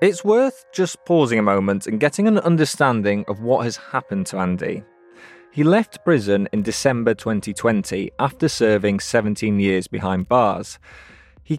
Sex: male